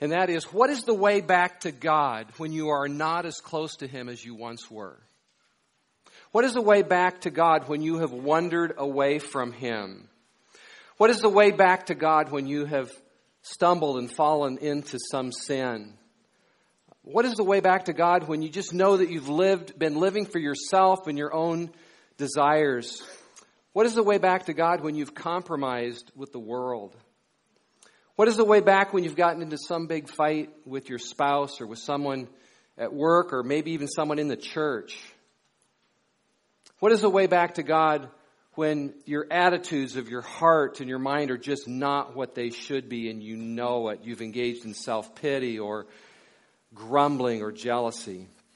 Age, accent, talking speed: 40-59, American, 185 wpm